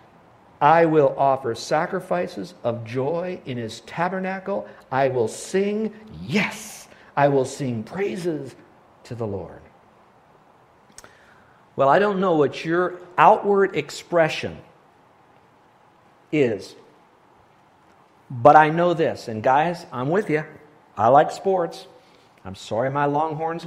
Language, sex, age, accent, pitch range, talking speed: English, male, 50-69, American, 115-165 Hz, 115 wpm